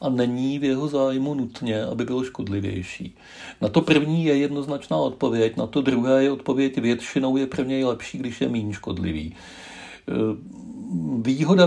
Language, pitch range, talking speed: Czech, 110-140 Hz, 155 wpm